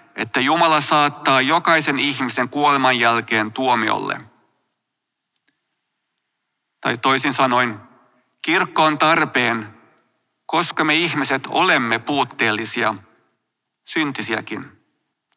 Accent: native